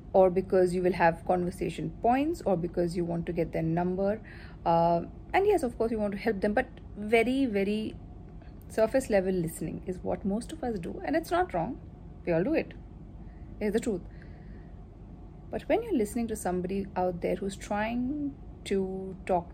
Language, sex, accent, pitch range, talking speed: English, female, Indian, 170-215 Hz, 185 wpm